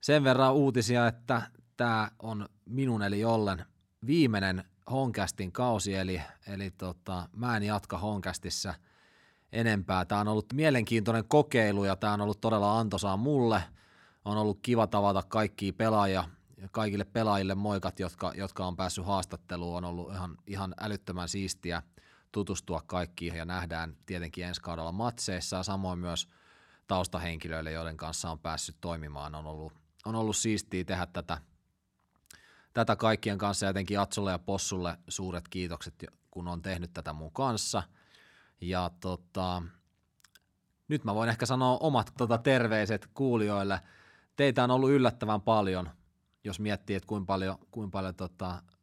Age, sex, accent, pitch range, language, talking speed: 30-49, male, native, 85-105 Hz, Finnish, 145 wpm